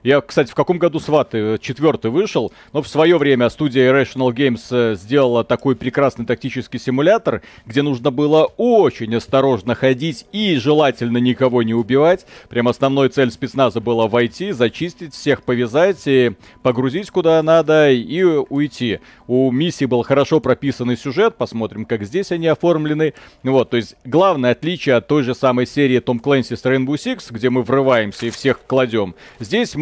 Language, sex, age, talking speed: Russian, male, 30-49, 155 wpm